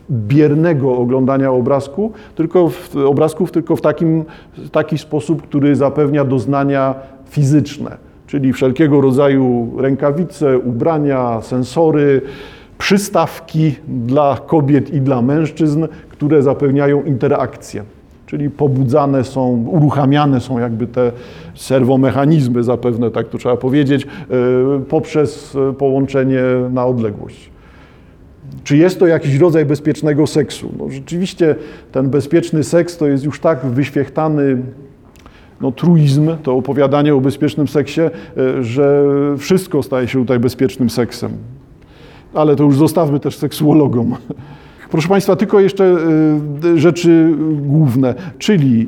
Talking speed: 105 wpm